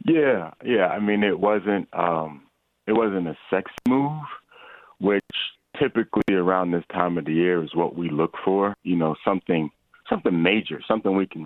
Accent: American